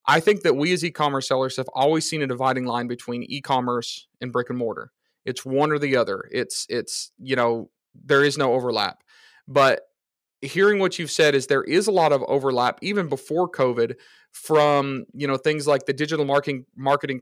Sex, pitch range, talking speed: male, 130-155 Hz, 195 wpm